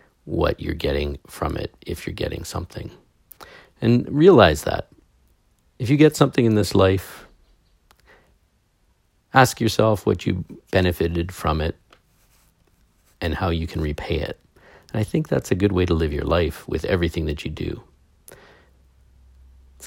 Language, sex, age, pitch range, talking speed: English, male, 40-59, 85-105 Hz, 150 wpm